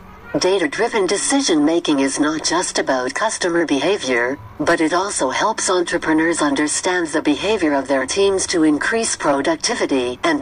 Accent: American